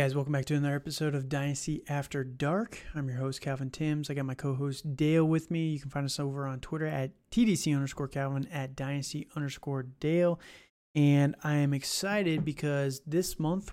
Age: 30-49